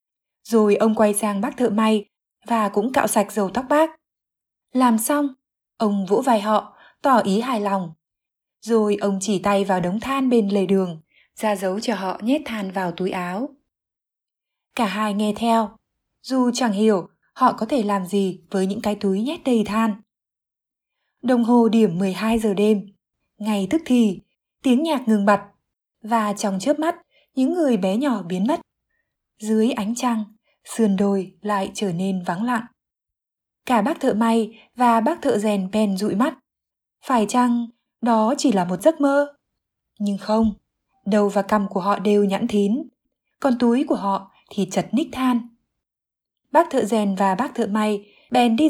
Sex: female